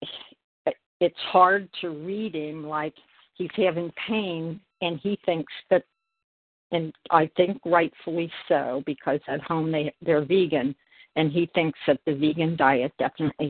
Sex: female